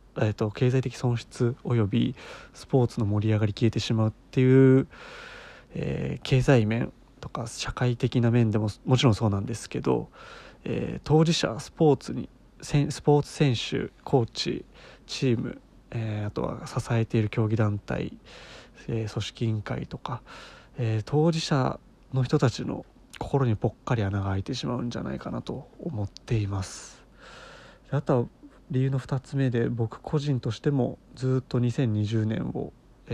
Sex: male